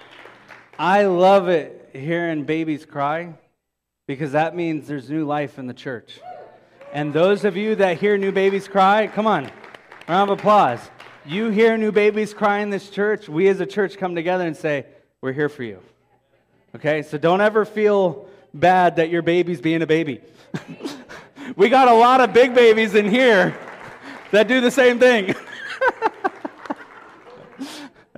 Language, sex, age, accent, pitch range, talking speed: English, male, 30-49, American, 135-190 Hz, 160 wpm